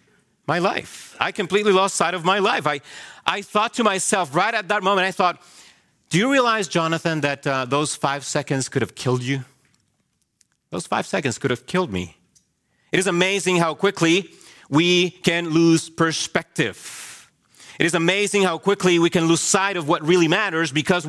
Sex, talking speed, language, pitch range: male, 180 wpm, English, 140-185 Hz